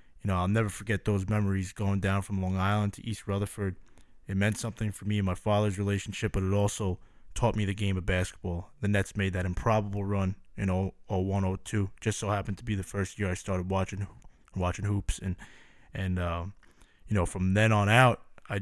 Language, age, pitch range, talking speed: English, 20-39, 95-110 Hz, 215 wpm